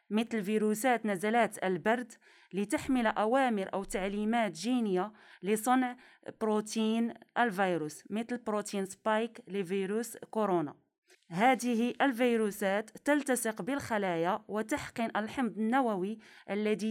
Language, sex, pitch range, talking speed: Arabic, female, 200-240 Hz, 90 wpm